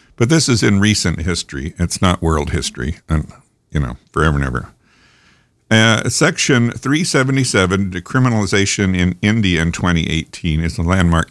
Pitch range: 85-105 Hz